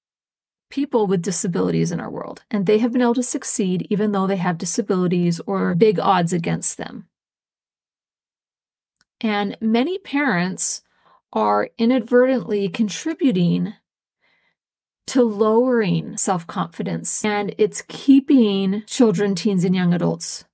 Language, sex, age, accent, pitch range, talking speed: English, female, 30-49, American, 185-240 Hz, 115 wpm